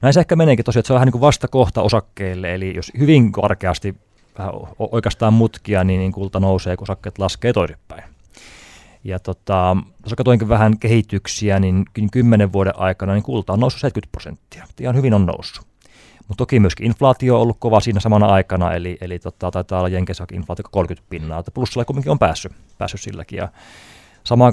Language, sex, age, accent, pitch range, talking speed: Finnish, male, 20-39, native, 95-120 Hz, 180 wpm